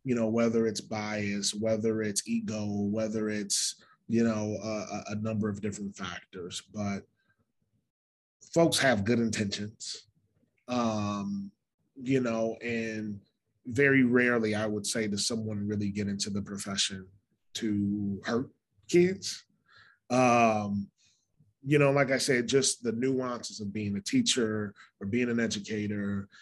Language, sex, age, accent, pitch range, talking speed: English, male, 20-39, American, 100-115 Hz, 135 wpm